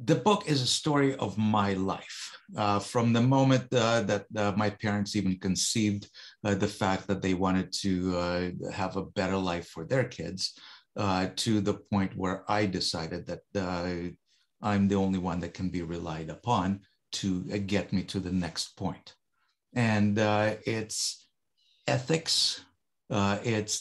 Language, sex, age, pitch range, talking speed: English, male, 50-69, 95-115 Hz, 165 wpm